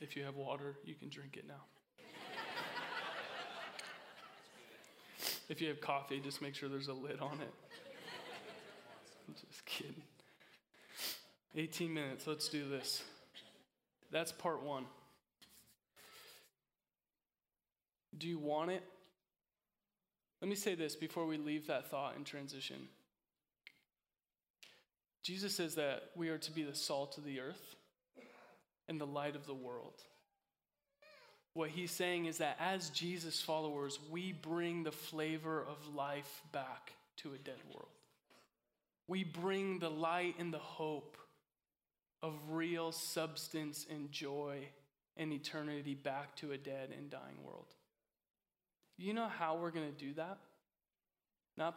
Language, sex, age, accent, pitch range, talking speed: English, male, 20-39, American, 145-170 Hz, 130 wpm